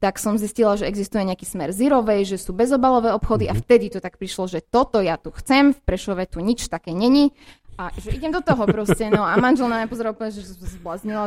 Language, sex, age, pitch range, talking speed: Slovak, female, 20-39, 190-240 Hz, 220 wpm